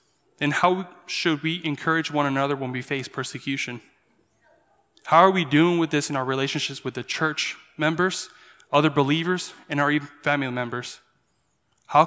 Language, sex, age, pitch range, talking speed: English, male, 10-29, 135-155 Hz, 155 wpm